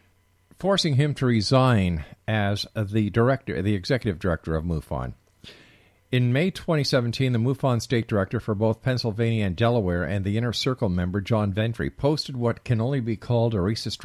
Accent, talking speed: American, 165 wpm